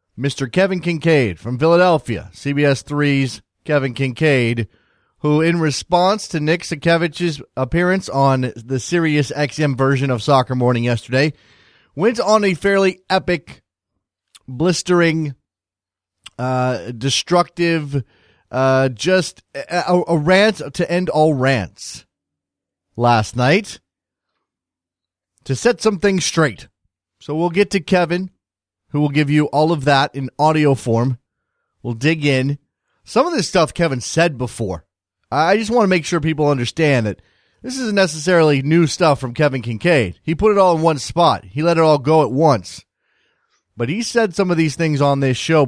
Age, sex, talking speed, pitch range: 30-49, male, 150 wpm, 125-170 Hz